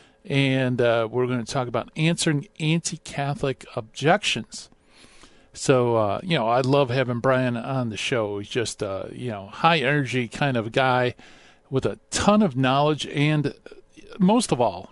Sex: male